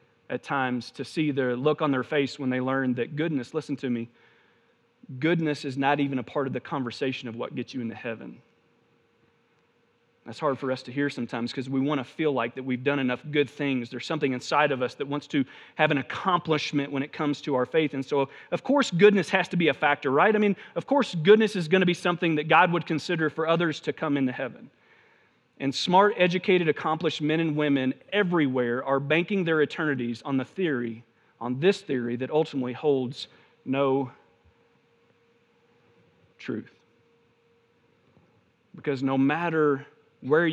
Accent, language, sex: American, English, male